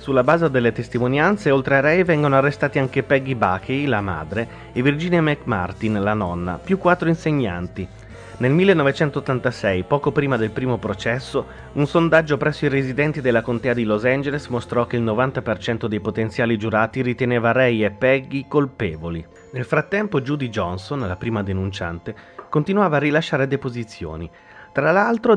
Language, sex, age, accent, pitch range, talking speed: Italian, male, 30-49, native, 110-145 Hz, 150 wpm